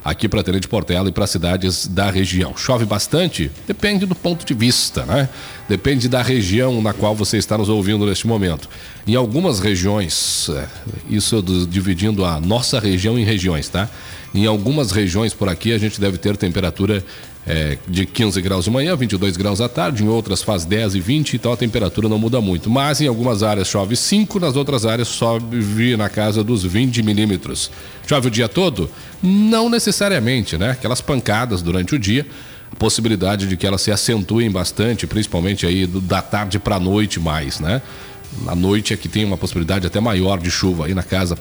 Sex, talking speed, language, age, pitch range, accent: male, 195 wpm, Portuguese, 40-59, 95-115 Hz, Brazilian